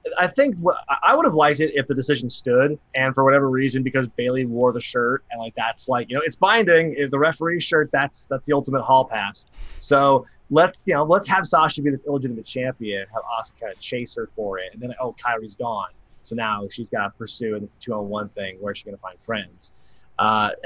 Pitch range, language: 115-150 Hz, English